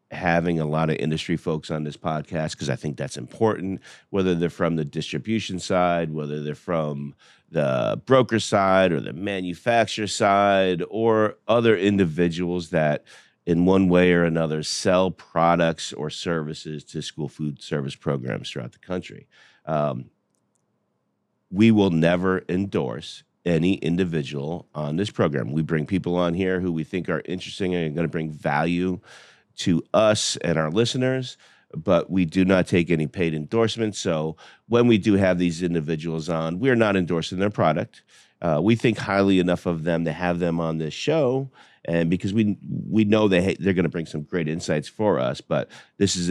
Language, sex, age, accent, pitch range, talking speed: English, male, 40-59, American, 80-95 Hz, 175 wpm